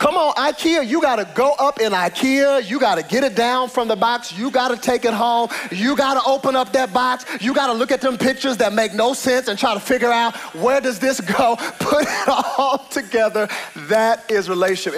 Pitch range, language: 150-255 Hz, English